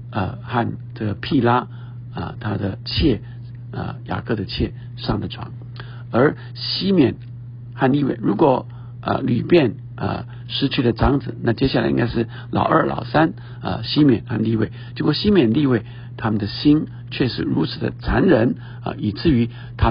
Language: Chinese